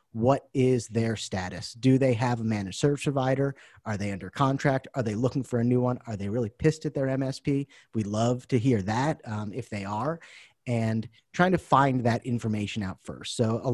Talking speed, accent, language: 210 wpm, American, English